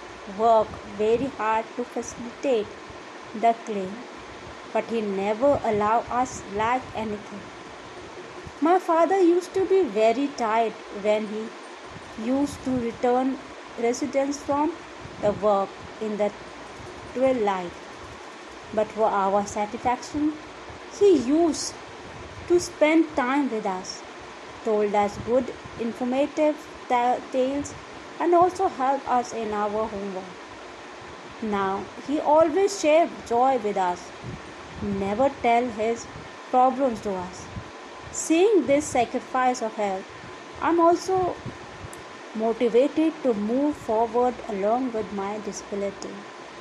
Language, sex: Hindi, female